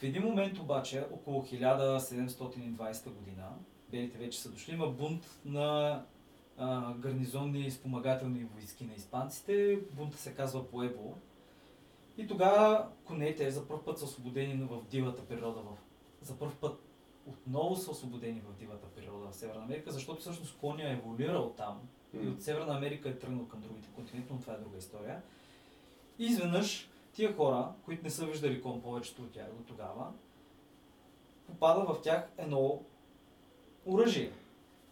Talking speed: 150 wpm